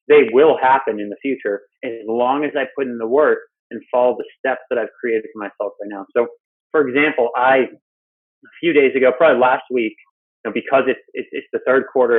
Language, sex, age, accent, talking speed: English, male, 30-49, American, 220 wpm